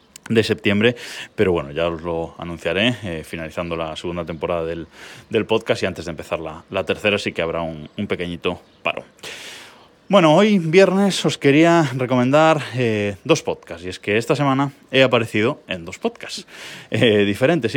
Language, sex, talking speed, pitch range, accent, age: Spanish, male, 170 wpm, 95-145 Hz, Spanish, 20-39